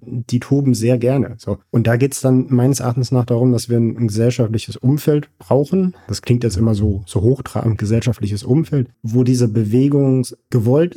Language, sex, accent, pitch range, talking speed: German, male, German, 115-130 Hz, 185 wpm